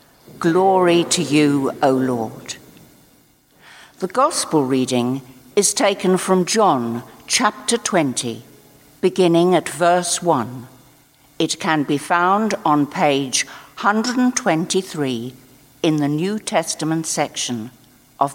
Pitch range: 135-190 Hz